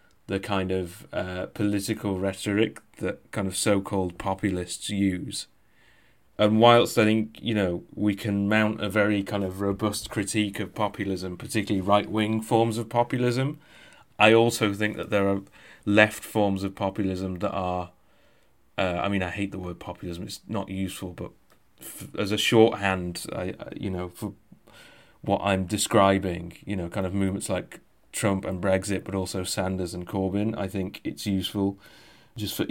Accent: British